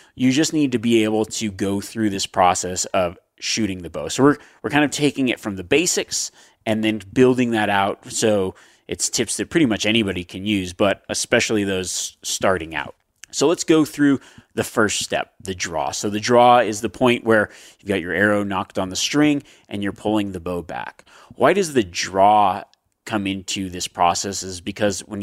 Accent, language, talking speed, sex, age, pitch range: American, English, 200 wpm, male, 30-49, 95-125 Hz